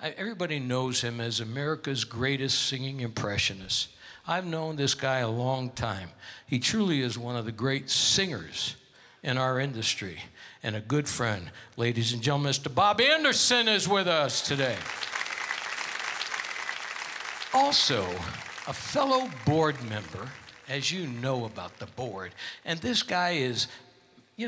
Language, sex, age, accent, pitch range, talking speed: English, male, 60-79, American, 120-165 Hz, 135 wpm